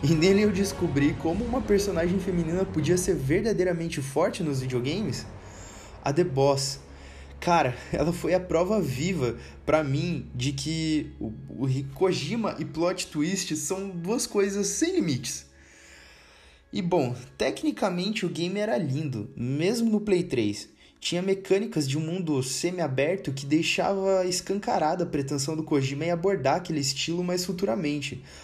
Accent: Brazilian